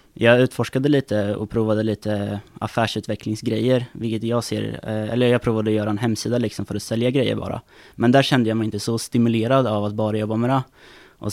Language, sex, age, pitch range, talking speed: Swedish, male, 20-39, 110-130 Hz, 200 wpm